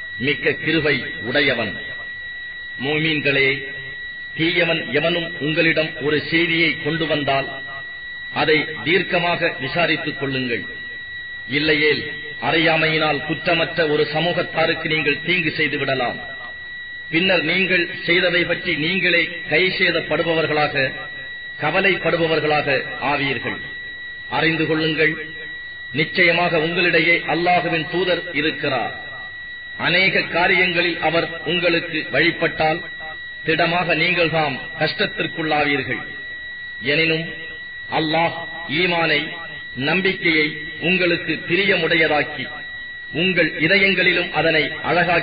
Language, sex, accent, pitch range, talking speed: English, male, Indian, 155-185 Hz, 75 wpm